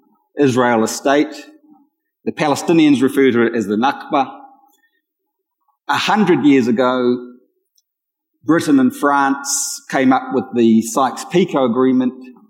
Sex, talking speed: male, 115 wpm